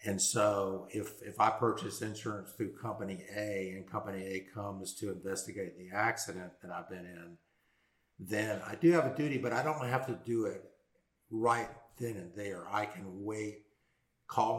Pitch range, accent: 95-110 Hz, American